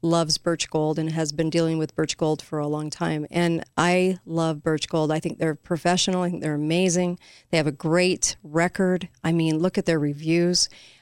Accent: American